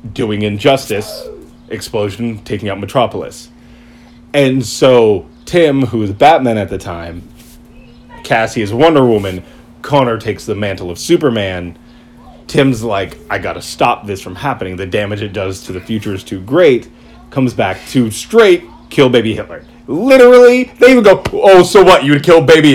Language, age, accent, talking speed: English, 30-49, American, 160 wpm